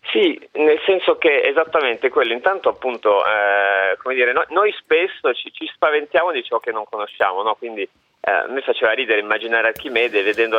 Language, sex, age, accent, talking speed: Italian, male, 30-49, native, 180 wpm